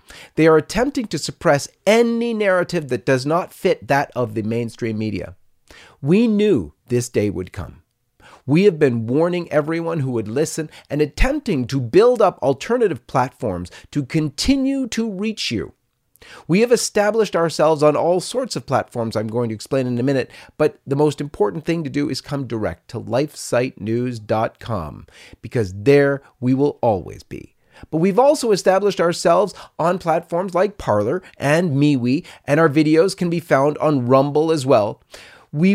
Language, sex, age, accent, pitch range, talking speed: English, male, 40-59, American, 120-170 Hz, 165 wpm